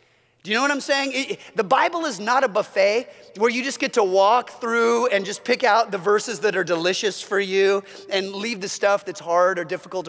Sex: male